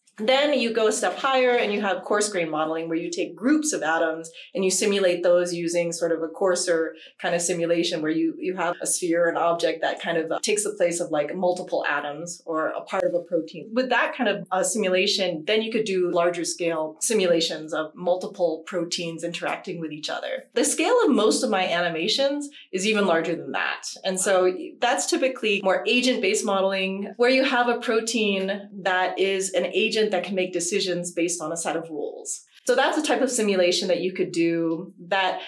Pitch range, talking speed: 170-210 Hz, 210 wpm